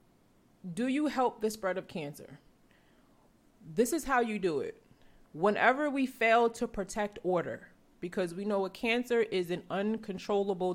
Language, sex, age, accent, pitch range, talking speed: English, female, 30-49, American, 175-225 Hz, 150 wpm